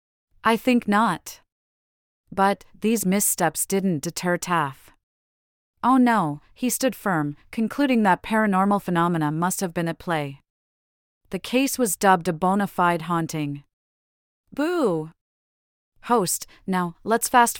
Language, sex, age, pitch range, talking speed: English, female, 30-49, 160-210 Hz, 125 wpm